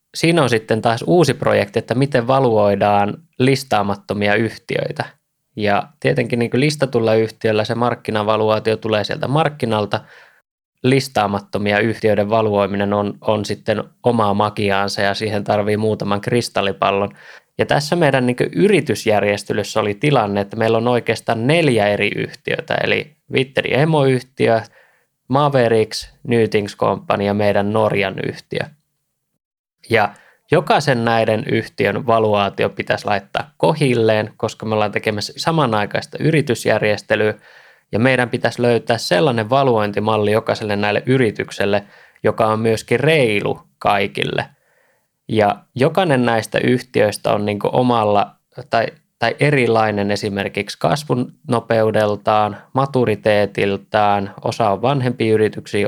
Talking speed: 110 wpm